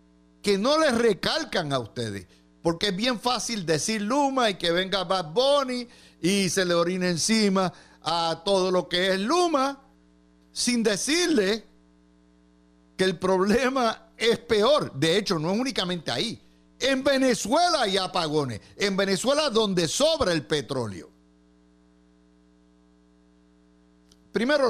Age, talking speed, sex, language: 60-79, 125 wpm, male, Spanish